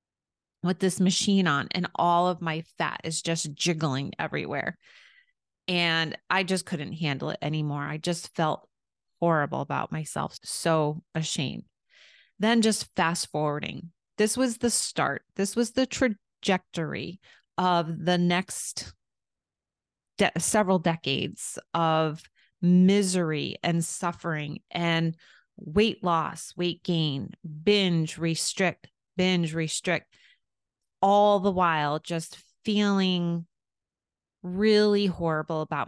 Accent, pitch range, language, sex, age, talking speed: American, 160-190 Hz, English, female, 30-49, 110 wpm